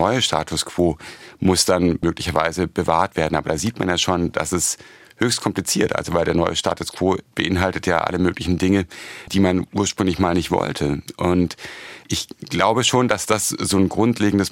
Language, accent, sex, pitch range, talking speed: German, German, male, 85-105 Hz, 180 wpm